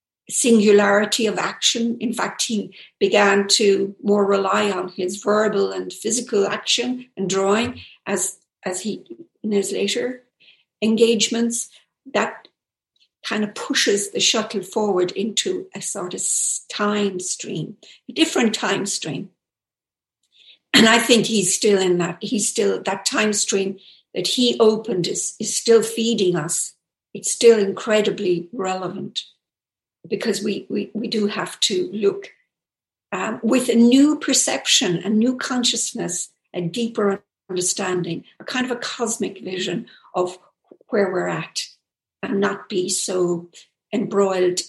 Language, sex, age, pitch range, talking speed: German, female, 60-79, 190-230 Hz, 135 wpm